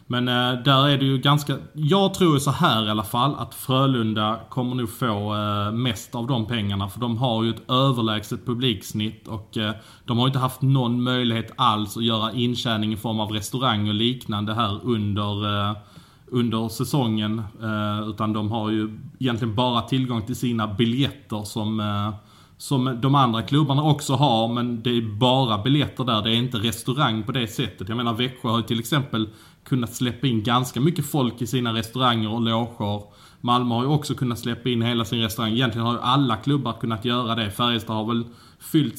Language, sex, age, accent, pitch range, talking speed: Swedish, male, 20-39, Norwegian, 110-130 Hz, 185 wpm